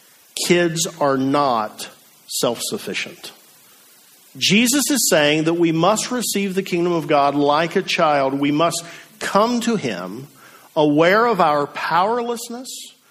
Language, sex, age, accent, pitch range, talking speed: English, male, 50-69, American, 135-170 Hz, 125 wpm